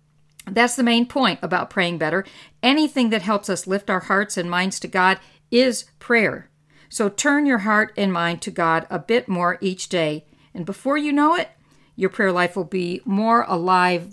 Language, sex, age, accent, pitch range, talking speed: English, female, 50-69, American, 170-230 Hz, 190 wpm